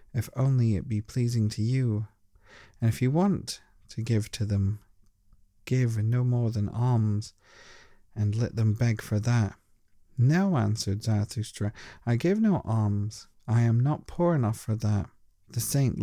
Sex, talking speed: male, 155 wpm